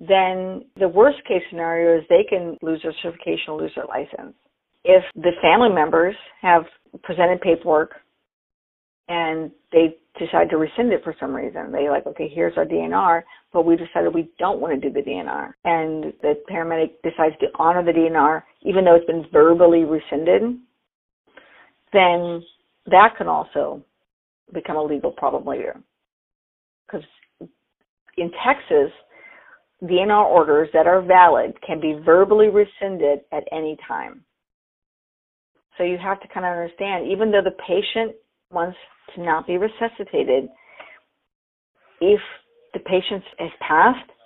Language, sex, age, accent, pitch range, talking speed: English, female, 50-69, American, 160-205 Hz, 145 wpm